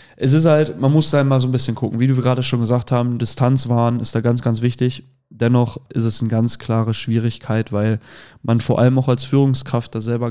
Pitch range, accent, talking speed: 110-125 Hz, German, 235 wpm